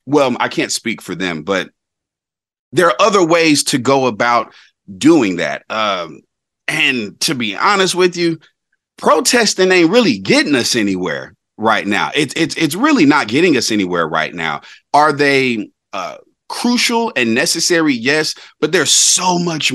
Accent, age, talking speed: American, 30-49, 150 wpm